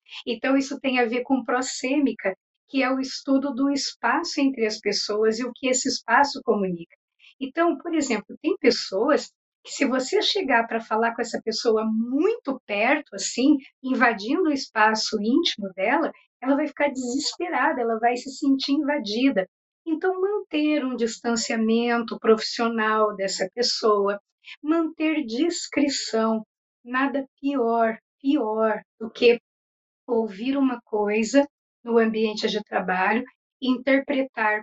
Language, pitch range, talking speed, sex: Portuguese, 220-275 Hz, 130 wpm, female